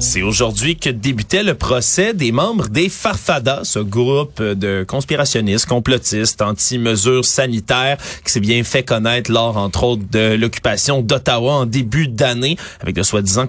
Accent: Canadian